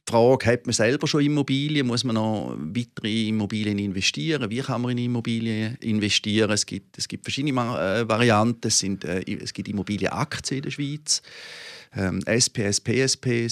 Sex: male